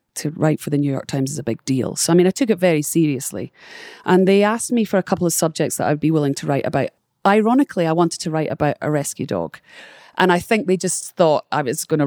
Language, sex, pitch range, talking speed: English, female, 150-215 Hz, 270 wpm